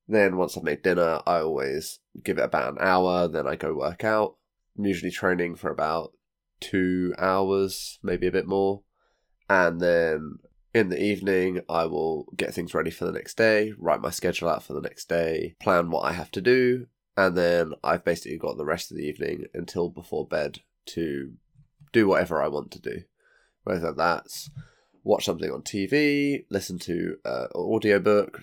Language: English